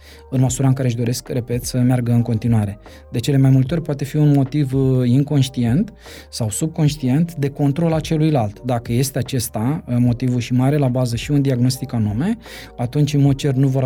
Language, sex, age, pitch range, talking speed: Romanian, male, 20-39, 120-150 Hz, 185 wpm